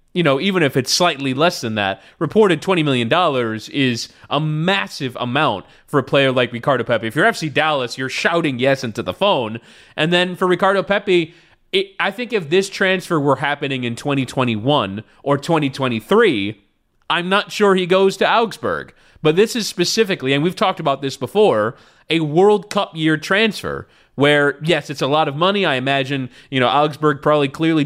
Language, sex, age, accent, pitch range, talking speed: English, male, 30-49, American, 135-185 Hz, 185 wpm